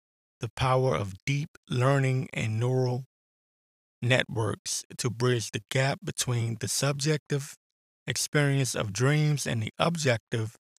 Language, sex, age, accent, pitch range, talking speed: English, male, 20-39, American, 115-135 Hz, 115 wpm